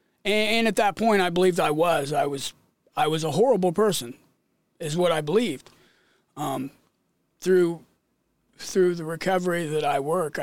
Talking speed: 155 wpm